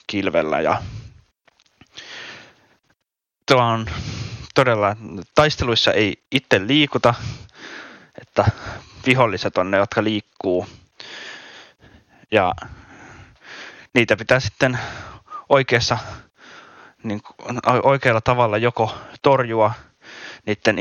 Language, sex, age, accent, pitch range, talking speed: Finnish, male, 20-39, native, 105-120 Hz, 70 wpm